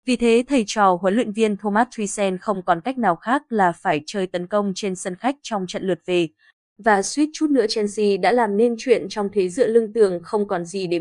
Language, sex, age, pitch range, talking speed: Vietnamese, female, 20-39, 195-240 Hz, 240 wpm